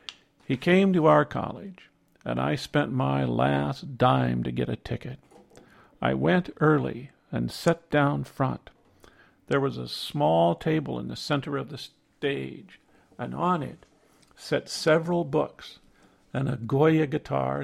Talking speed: 145 wpm